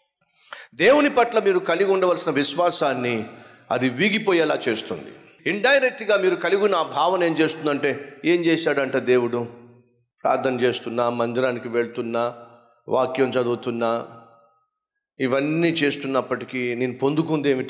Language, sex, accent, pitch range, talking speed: Telugu, male, native, 120-180 Hz, 100 wpm